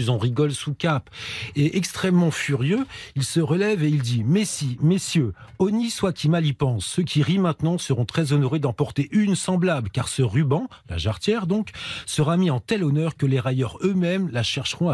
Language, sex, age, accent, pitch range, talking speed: French, male, 40-59, French, 125-170 Hz, 195 wpm